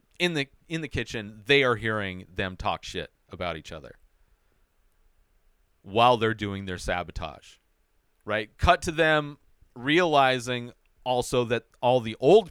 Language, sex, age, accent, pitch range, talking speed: English, male, 40-59, American, 90-120 Hz, 140 wpm